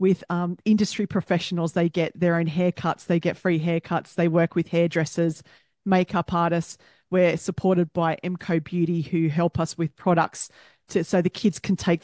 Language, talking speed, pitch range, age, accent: English, 170 wpm, 170-195 Hz, 40-59, Australian